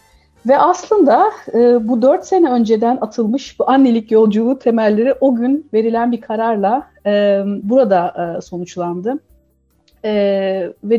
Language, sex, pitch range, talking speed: Turkish, female, 190-235 Hz, 125 wpm